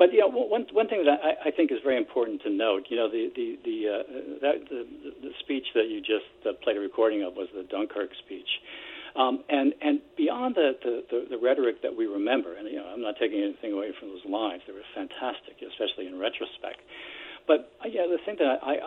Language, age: English, 60-79